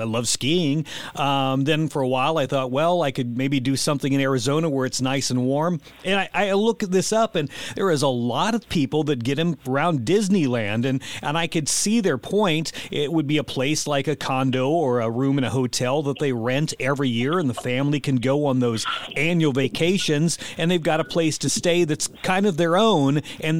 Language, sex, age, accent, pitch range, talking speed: English, male, 40-59, American, 135-160 Hz, 225 wpm